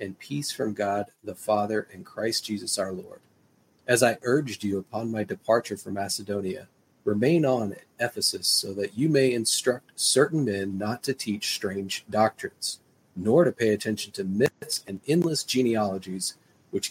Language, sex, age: English, male, 40-59